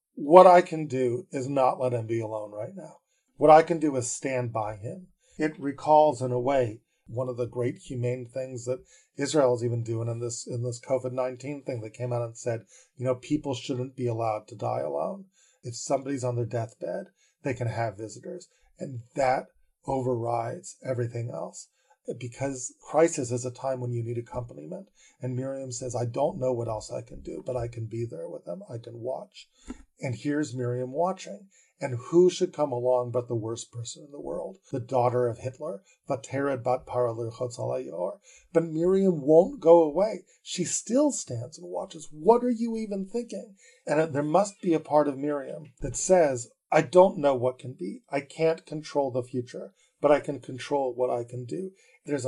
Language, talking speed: English, 190 wpm